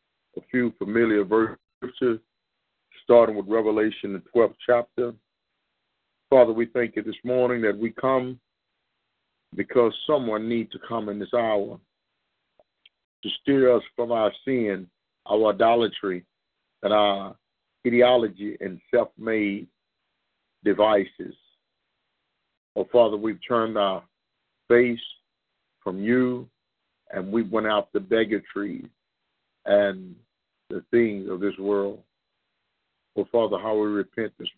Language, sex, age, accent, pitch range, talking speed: English, male, 50-69, American, 100-120 Hz, 120 wpm